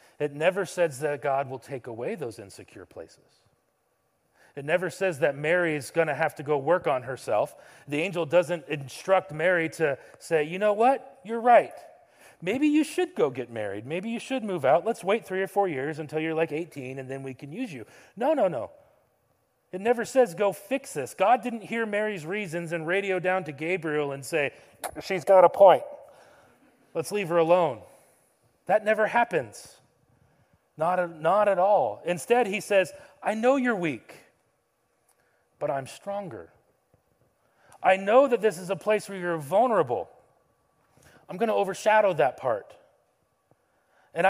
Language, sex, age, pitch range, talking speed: English, male, 30-49, 155-210 Hz, 175 wpm